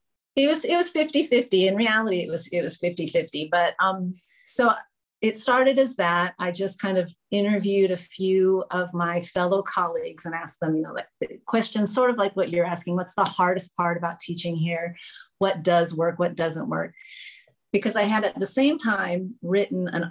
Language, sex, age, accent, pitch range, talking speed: English, female, 40-59, American, 175-205 Hz, 195 wpm